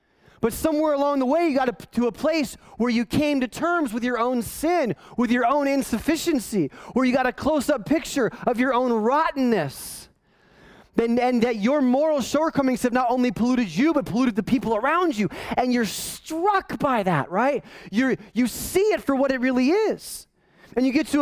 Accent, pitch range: American, 215-280 Hz